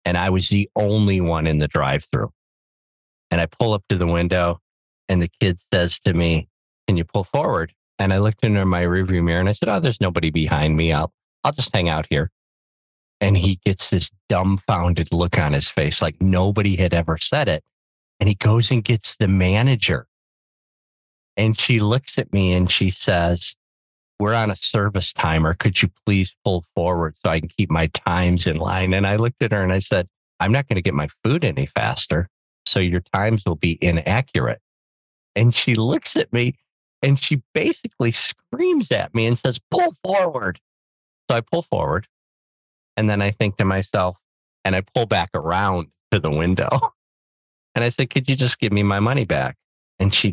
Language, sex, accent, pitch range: English, male, American, 85-110 Hz